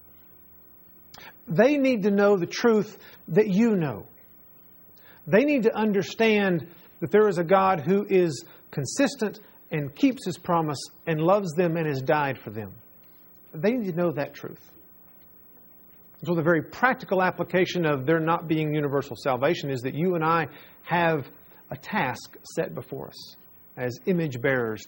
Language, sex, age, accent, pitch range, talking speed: English, male, 40-59, American, 125-205 Hz, 155 wpm